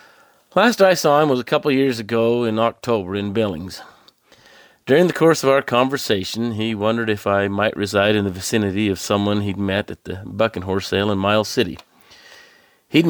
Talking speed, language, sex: 195 wpm, English, male